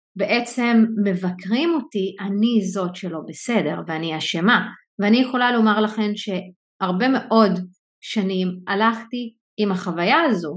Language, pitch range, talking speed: Hebrew, 185-235 Hz, 115 wpm